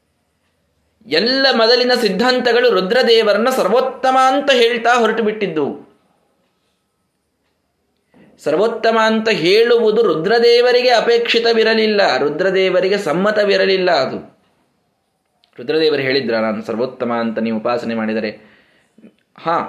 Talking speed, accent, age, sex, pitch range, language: 80 wpm, native, 20-39, male, 145-230 Hz, Kannada